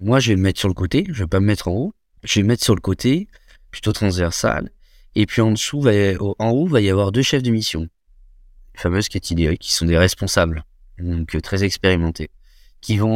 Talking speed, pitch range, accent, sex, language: 235 wpm, 85-105 Hz, French, male, French